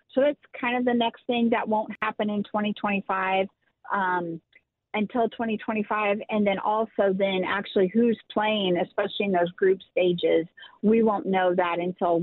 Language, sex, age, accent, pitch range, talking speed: English, female, 40-59, American, 185-215 Hz, 155 wpm